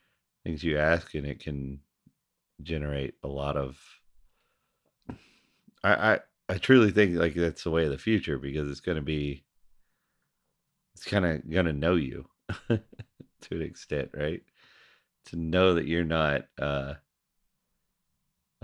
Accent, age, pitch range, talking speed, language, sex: American, 40-59, 70-90 Hz, 140 wpm, English, male